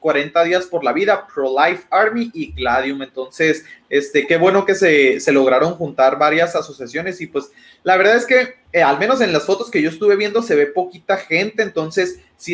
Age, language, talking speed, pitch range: 30-49, Spanish, 200 wpm, 150-210 Hz